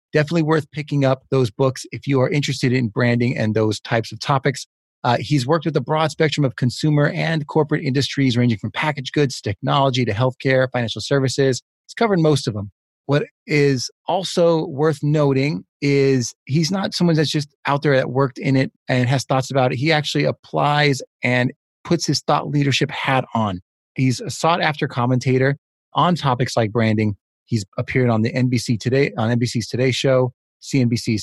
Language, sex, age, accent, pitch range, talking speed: English, male, 30-49, American, 120-145 Hz, 185 wpm